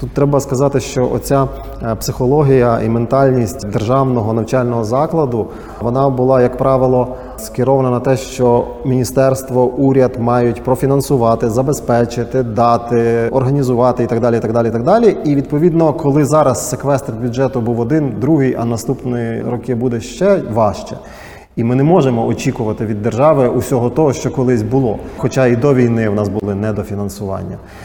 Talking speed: 150 wpm